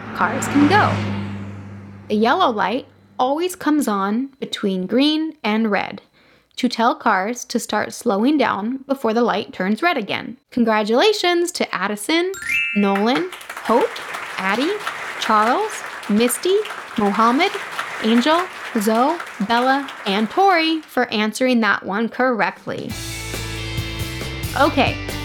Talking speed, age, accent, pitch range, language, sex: 110 wpm, 10-29, American, 200-300 Hz, English, female